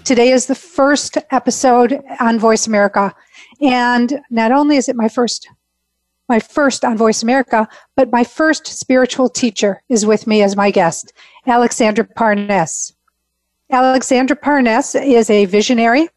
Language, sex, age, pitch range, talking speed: English, female, 50-69, 215-260 Hz, 140 wpm